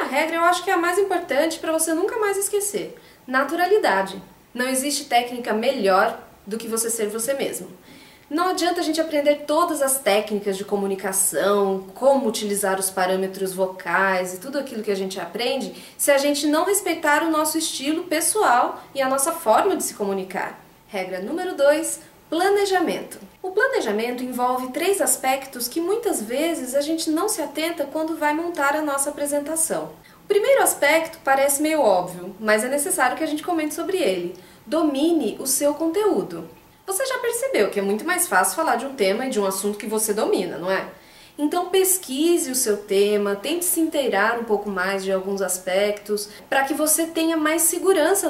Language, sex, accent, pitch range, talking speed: Portuguese, female, Brazilian, 210-325 Hz, 180 wpm